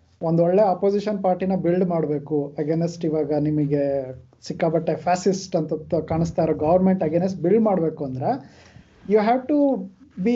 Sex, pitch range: male, 165-225 Hz